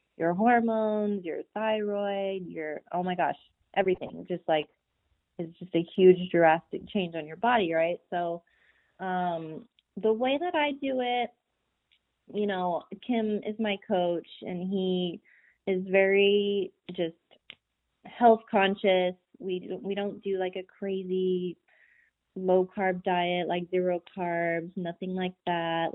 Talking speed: 135 wpm